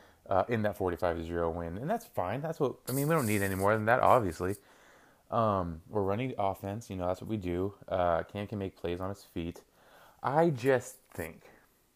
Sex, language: male, English